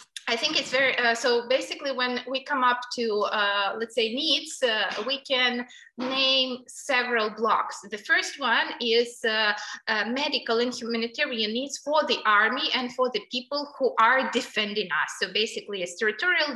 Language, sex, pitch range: English, female, 225-270 Hz